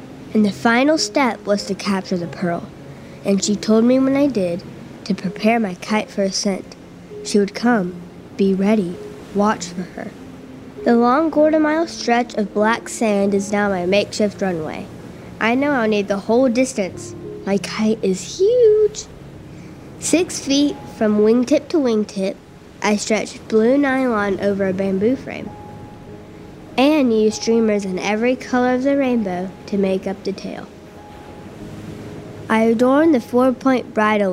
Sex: female